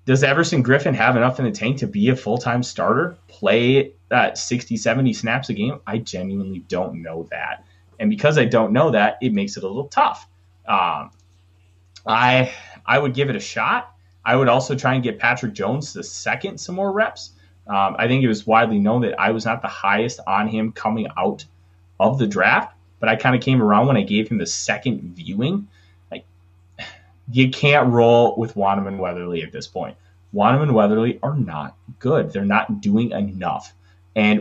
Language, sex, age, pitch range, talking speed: English, male, 20-39, 95-125 Hz, 190 wpm